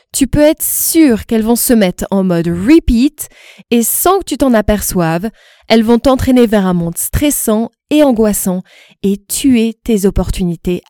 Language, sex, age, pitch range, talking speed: French, female, 20-39, 180-240 Hz, 165 wpm